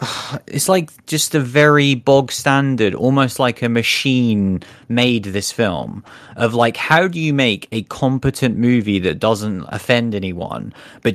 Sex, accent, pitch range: male, British, 115-145 Hz